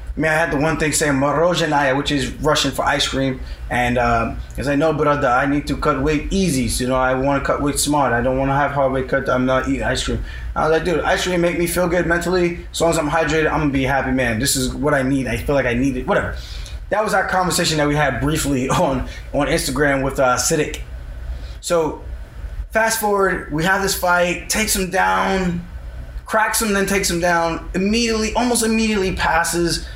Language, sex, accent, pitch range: English, male, American, 130-180 Hz